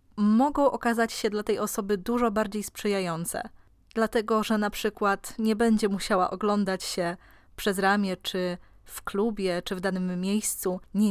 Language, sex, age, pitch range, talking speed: Polish, female, 20-39, 190-225 Hz, 150 wpm